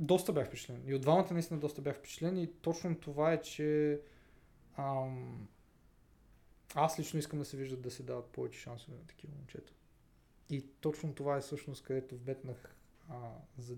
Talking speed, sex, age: 170 wpm, male, 20-39